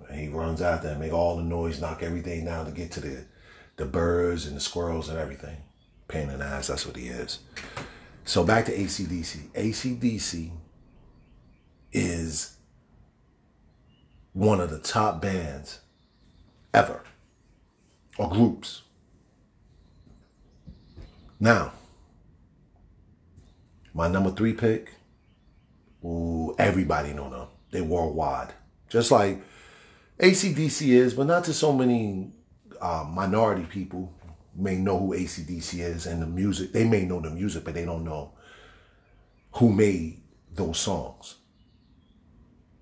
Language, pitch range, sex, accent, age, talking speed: English, 80-110 Hz, male, American, 40-59, 125 wpm